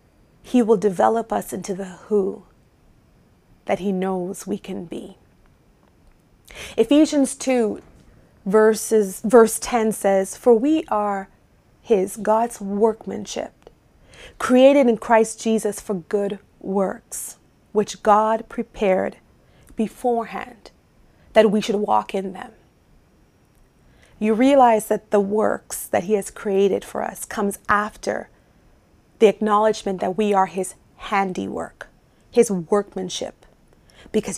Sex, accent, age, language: female, American, 30-49, English